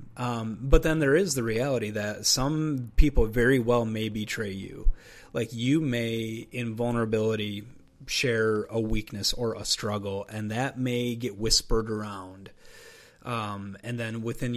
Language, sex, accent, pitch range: English, male, American, 105-120 Hz